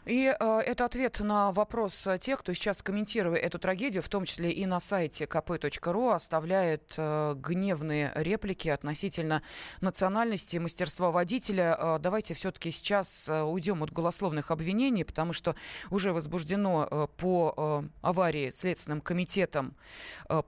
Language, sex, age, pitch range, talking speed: Russian, female, 20-39, 165-200 Hz, 140 wpm